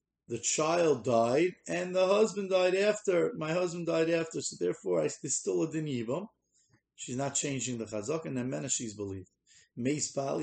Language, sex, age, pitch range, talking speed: English, male, 30-49, 115-135 Hz, 175 wpm